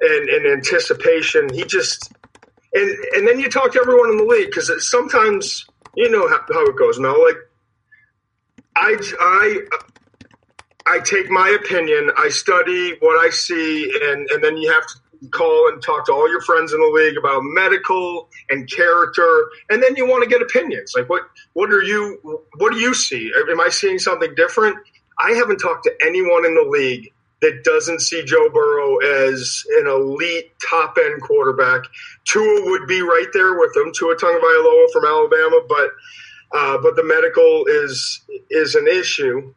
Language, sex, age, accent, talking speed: English, male, 40-59, American, 180 wpm